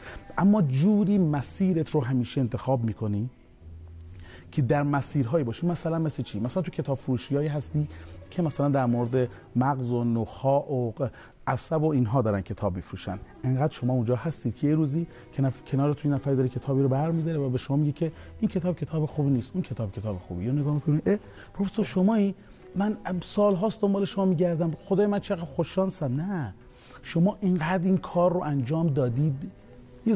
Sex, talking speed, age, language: male, 175 wpm, 30-49, Persian